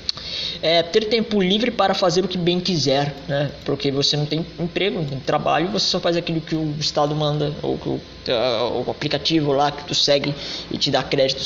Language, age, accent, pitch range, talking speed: Portuguese, 20-39, Brazilian, 135-170 Hz, 200 wpm